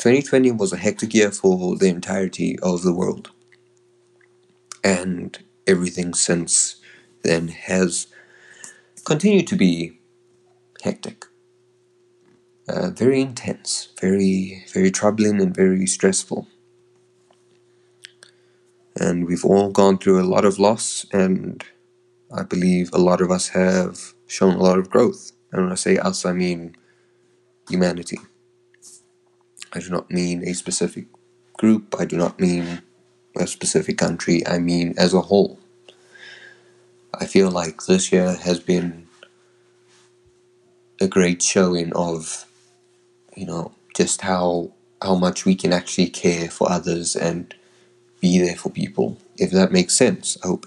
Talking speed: 135 wpm